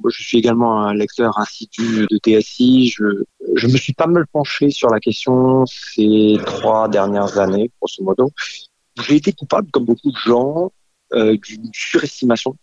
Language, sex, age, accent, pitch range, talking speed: French, male, 30-49, French, 110-145 Hz, 165 wpm